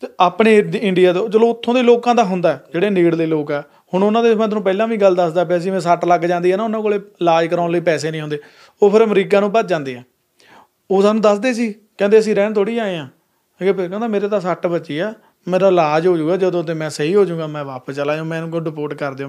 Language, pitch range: Punjabi, 160-210 Hz